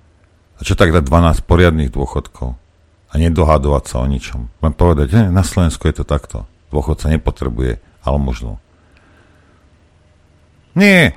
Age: 50-69